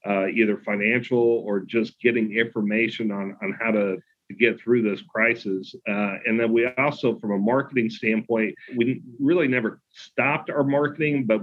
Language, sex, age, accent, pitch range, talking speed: English, male, 40-59, American, 105-120 Hz, 170 wpm